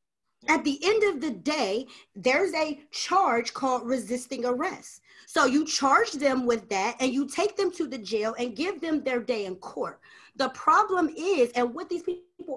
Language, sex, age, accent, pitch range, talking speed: English, female, 30-49, American, 245-325 Hz, 185 wpm